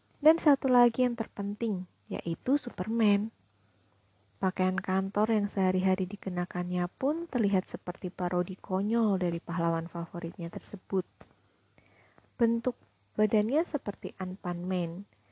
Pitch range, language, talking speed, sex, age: 175-225 Hz, Indonesian, 100 wpm, female, 20-39